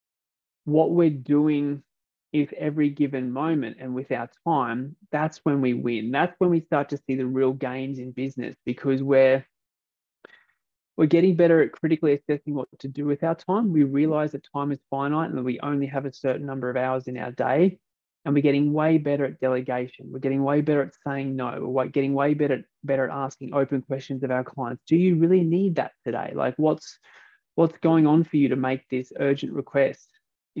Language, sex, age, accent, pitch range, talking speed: English, male, 20-39, Australian, 130-155 Hz, 205 wpm